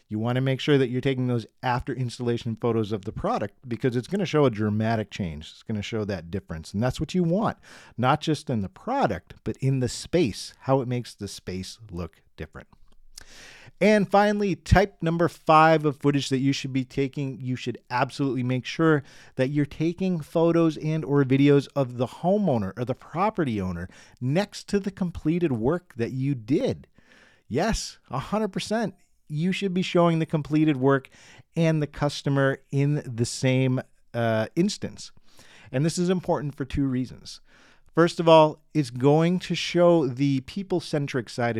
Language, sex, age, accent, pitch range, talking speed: English, male, 40-59, American, 115-160 Hz, 175 wpm